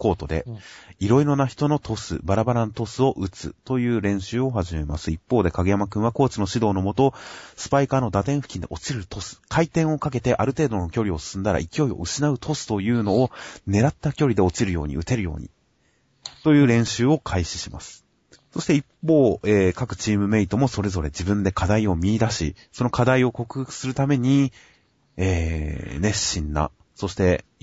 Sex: male